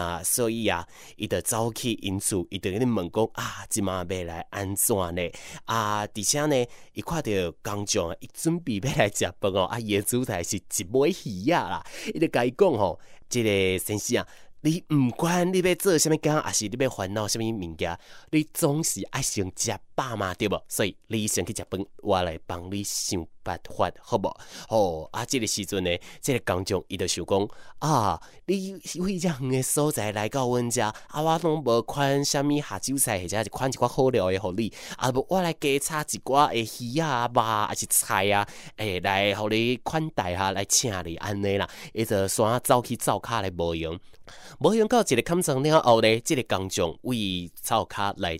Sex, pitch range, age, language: male, 100-145 Hz, 20-39, Chinese